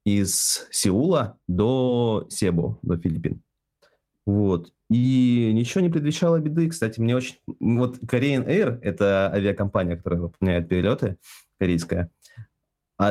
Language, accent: Russian, native